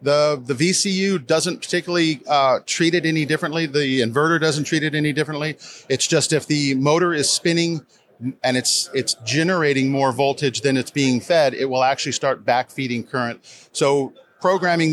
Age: 40-59